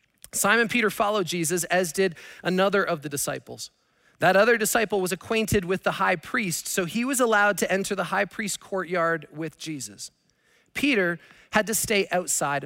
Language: English